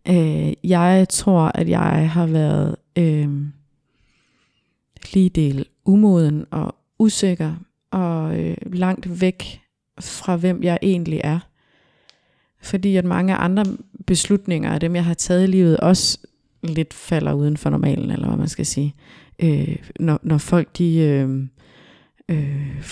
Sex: female